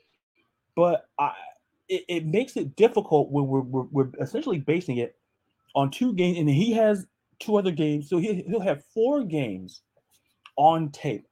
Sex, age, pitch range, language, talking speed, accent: male, 30-49, 130-195 Hz, English, 165 wpm, American